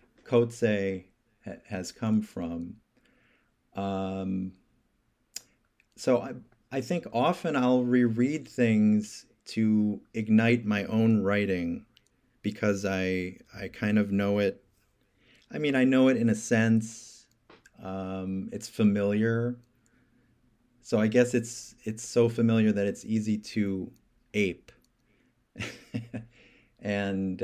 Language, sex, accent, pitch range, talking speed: English, male, American, 95-115 Hz, 105 wpm